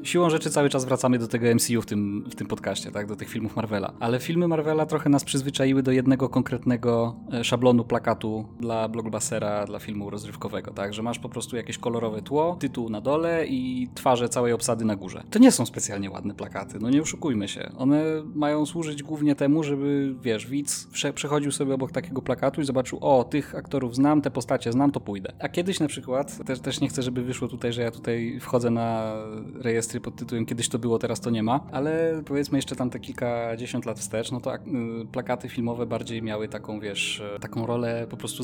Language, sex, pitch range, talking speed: Polish, male, 115-135 Hz, 200 wpm